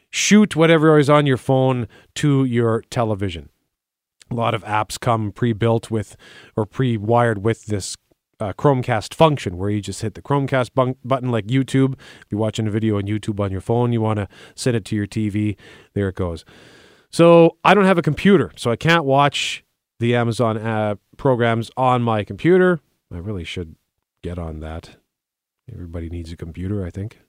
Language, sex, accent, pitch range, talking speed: English, male, American, 100-140 Hz, 185 wpm